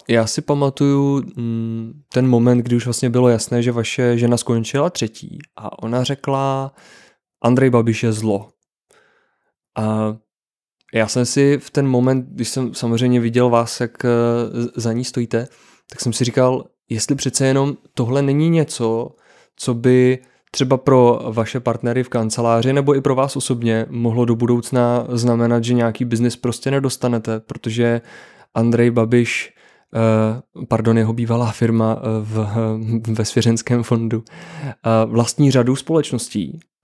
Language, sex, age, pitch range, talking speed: Czech, male, 20-39, 115-130 Hz, 135 wpm